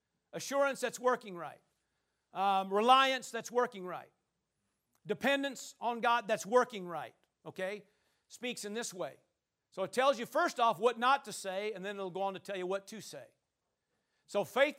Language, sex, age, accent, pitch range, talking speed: English, male, 50-69, American, 215-280 Hz, 175 wpm